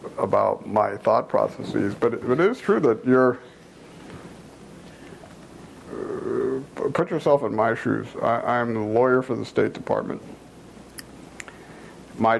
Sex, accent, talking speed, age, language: male, American, 120 wpm, 50-69, English